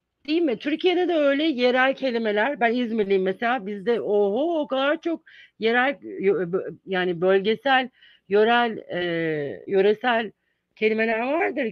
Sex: female